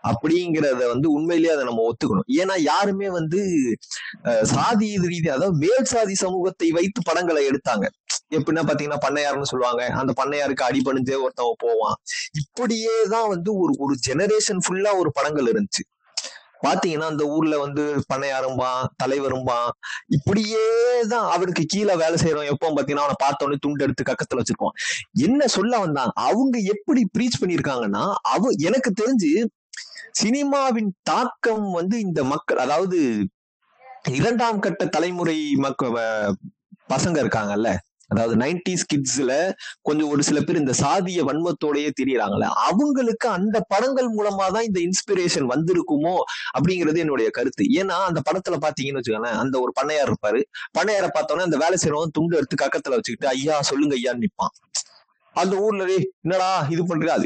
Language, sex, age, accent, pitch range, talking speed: Tamil, male, 30-49, native, 145-210 Hz, 130 wpm